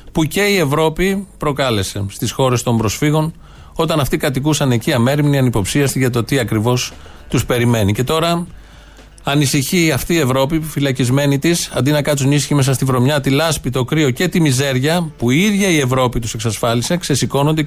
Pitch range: 115-150 Hz